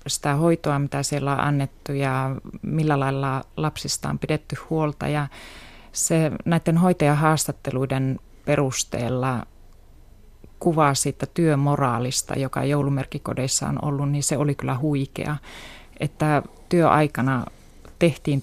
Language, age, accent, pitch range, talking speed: Finnish, 30-49, native, 135-155 Hz, 105 wpm